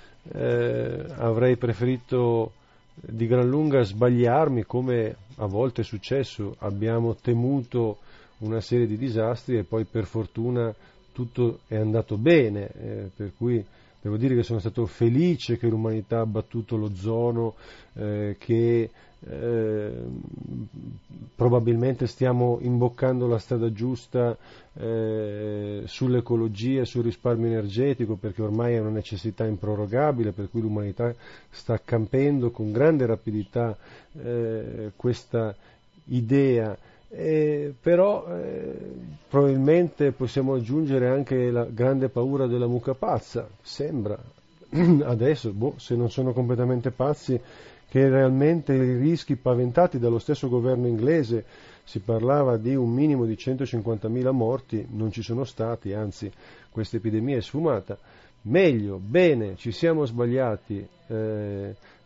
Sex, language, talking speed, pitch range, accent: male, Italian, 120 wpm, 110-130 Hz, native